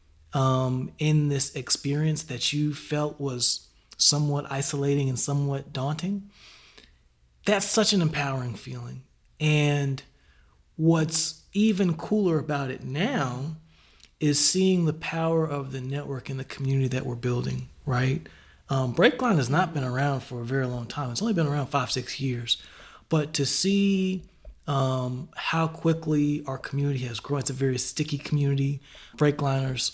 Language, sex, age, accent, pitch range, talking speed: English, male, 30-49, American, 130-155 Hz, 145 wpm